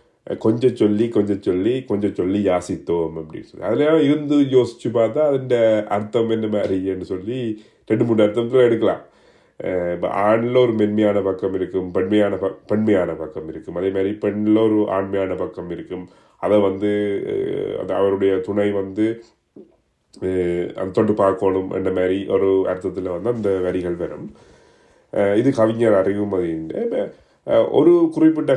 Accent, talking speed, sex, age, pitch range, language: native, 120 wpm, male, 30-49, 95-125 Hz, Tamil